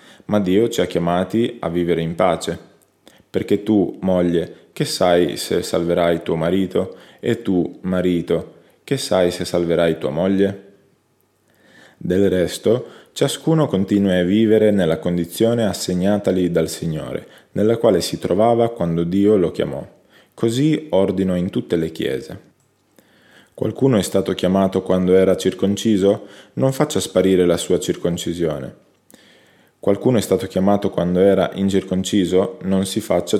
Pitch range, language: 90-105 Hz, Italian